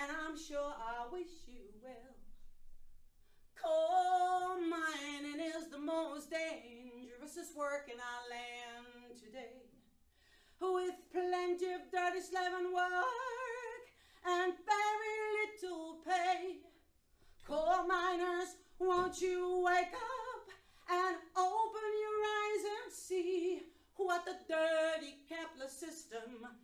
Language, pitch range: English, 285-365 Hz